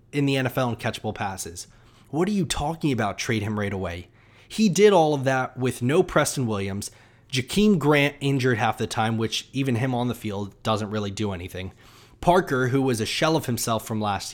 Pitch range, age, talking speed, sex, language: 115-140 Hz, 20-39, 205 wpm, male, English